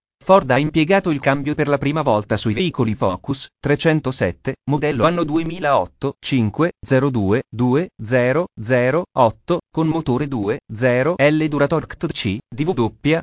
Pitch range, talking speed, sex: 125-165 Hz, 105 wpm, male